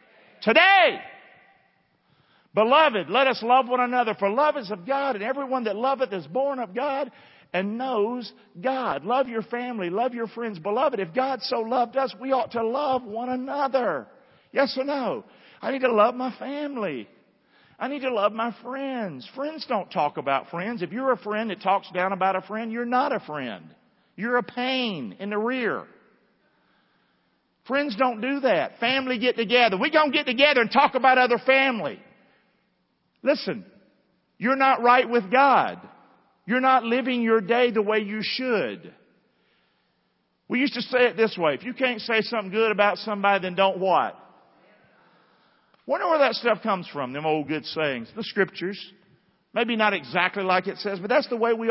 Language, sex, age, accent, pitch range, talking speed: English, male, 50-69, American, 200-260 Hz, 180 wpm